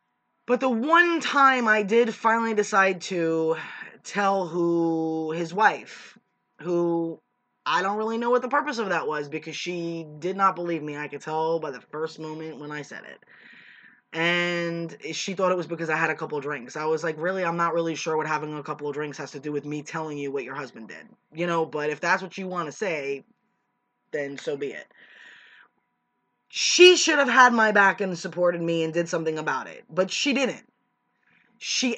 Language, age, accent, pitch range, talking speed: English, 20-39, American, 165-245 Hz, 205 wpm